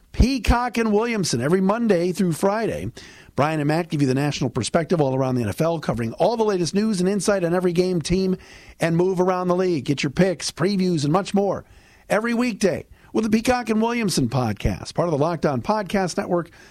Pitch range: 130-195 Hz